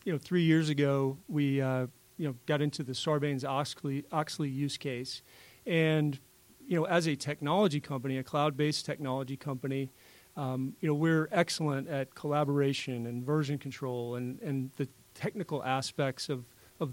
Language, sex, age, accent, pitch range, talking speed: English, male, 40-59, American, 130-150 Hz, 155 wpm